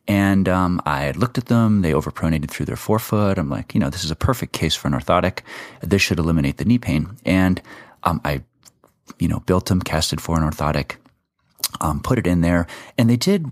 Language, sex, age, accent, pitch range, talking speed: English, male, 30-49, American, 80-100 Hz, 215 wpm